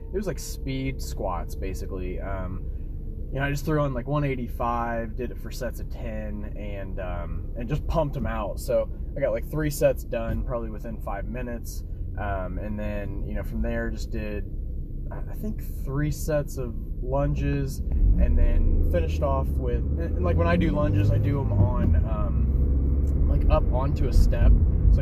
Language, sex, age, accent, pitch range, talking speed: English, male, 20-39, American, 75-100 Hz, 180 wpm